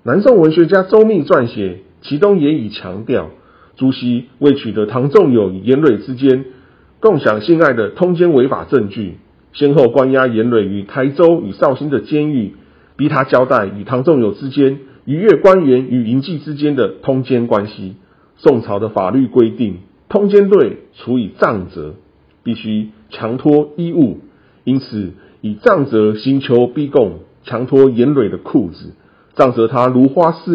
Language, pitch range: Chinese, 110-150 Hz